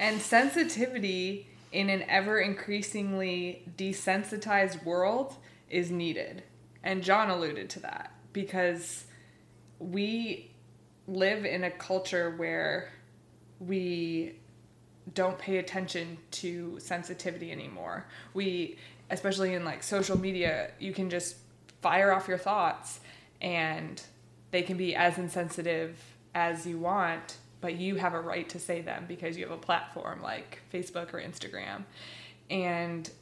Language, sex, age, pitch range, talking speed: English, female, 20-39, 170-190 Hz, 125 wpm